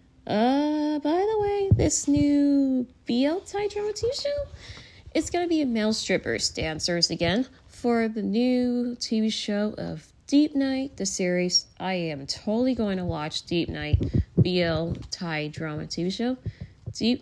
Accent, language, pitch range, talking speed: American, English, 165-260 Hz, 155 wpm